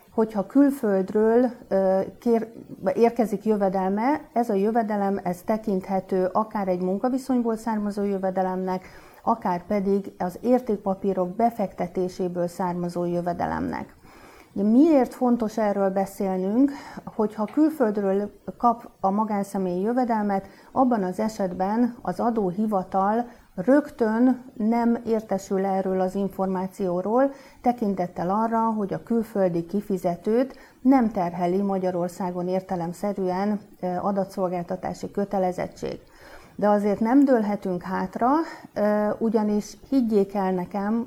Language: Hungarian